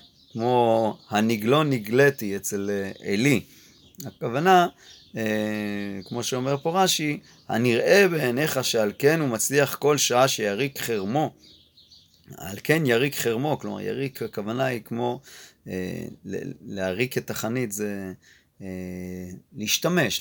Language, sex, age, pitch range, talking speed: Hebrew, male, 30-49, 100-140 Hz, 100 wpm